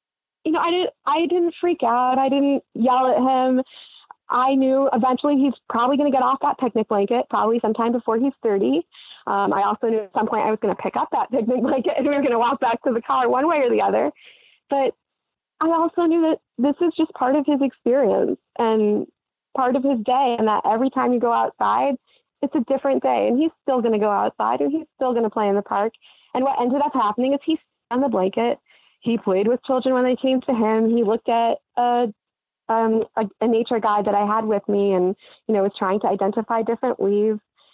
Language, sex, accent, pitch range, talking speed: English, female, American, 215-270 Hz, 235 wpm